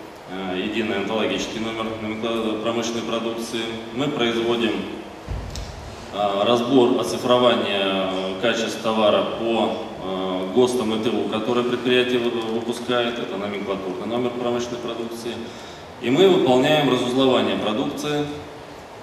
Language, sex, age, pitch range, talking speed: Russian, male, 20-39, 100-120 Hz, 90 wpm